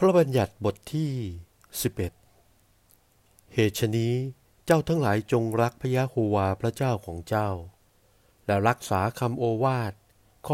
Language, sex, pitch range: Thai, male, 100-125 Hz